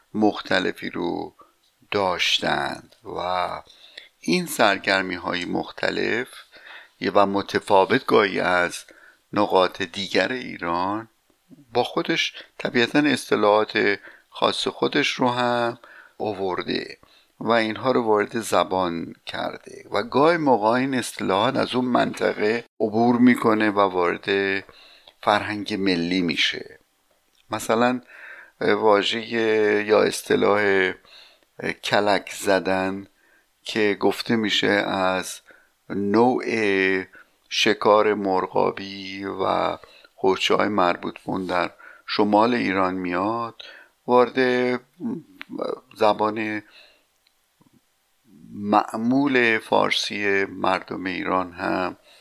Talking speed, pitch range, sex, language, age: 80 wpm, 95-120 Hz, male, Persian, 60-79